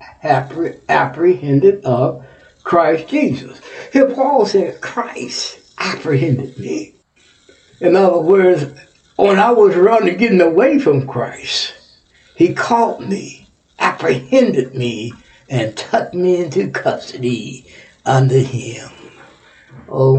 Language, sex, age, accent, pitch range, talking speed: English, male, 60-79, American, 135-210 Hz, 105 wpm